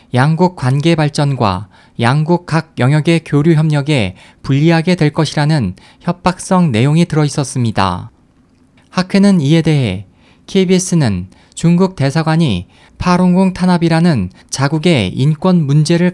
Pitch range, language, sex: 120-175 Hz, Korean, male